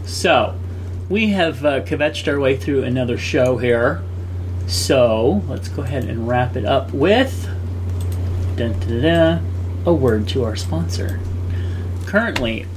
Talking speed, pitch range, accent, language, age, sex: 120 wpm, 90-105 Hz, American, English, 30-49, male